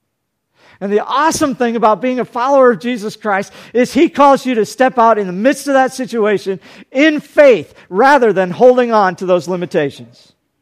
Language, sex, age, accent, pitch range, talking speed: English, male, 50-69, American, 205-265 Hz, 185 wpm